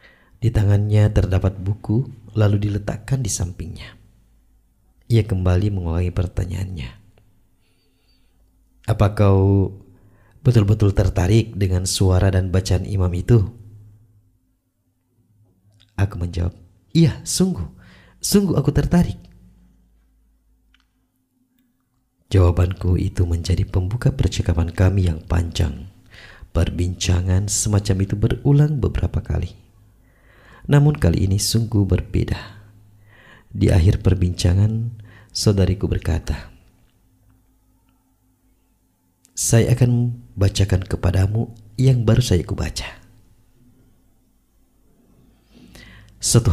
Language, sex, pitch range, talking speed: Indonesian, male, 90-110 Hz, 80 wpm